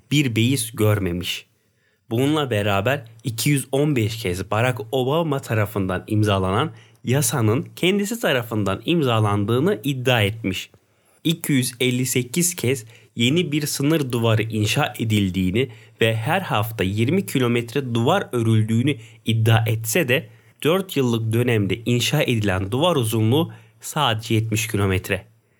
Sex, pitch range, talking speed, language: male, 110-140 Hz, 105 wpm, Turkish